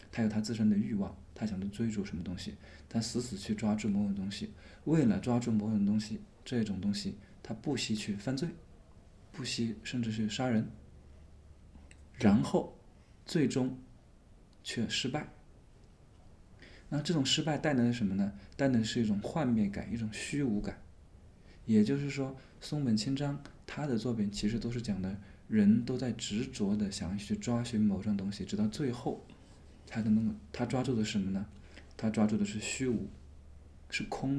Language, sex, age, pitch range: Chinese, male, 20-39, 100-125 Hz